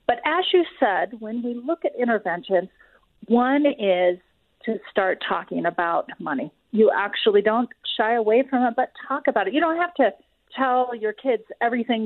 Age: 40-59